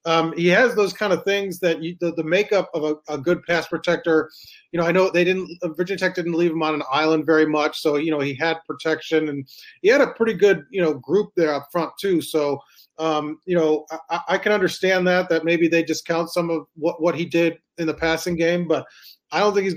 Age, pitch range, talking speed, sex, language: 30-49, 155-175 Hz, 245 wpm, male, English